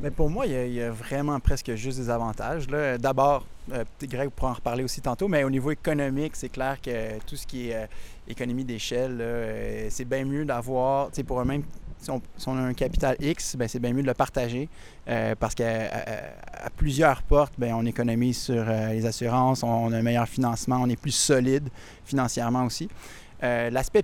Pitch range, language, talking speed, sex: 115-140 Hz, French, 225 wpm, male